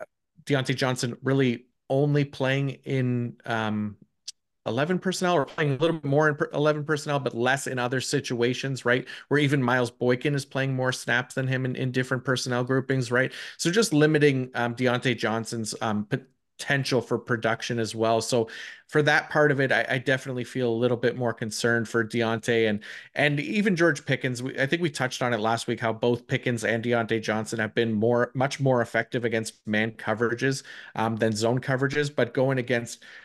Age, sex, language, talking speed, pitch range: 30-49, male, English, 190 wpm, 110-135 Hz